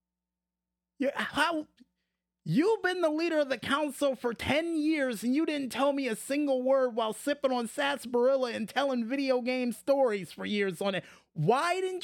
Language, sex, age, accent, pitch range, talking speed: English, male, 30-49, American, 170-255 Hz, 165 wpm